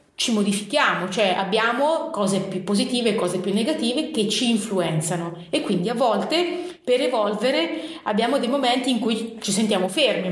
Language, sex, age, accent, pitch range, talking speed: Italian, female, 30-49, native, 195-250 Hz, 165 wpm